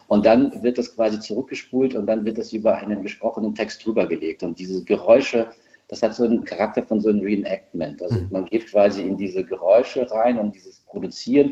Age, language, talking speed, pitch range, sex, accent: 40-59, German, 200 wpm, 95-115 Hz, male, German